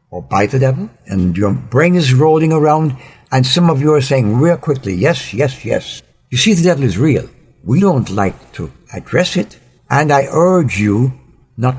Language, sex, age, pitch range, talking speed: English, male, 60-79, 115-145 Hz, 195 wpm